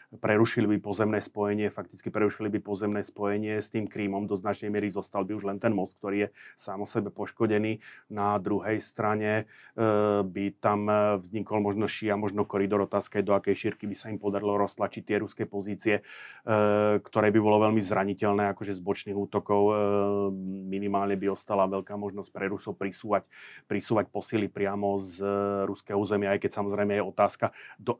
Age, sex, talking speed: 30-49, male, 175 wpm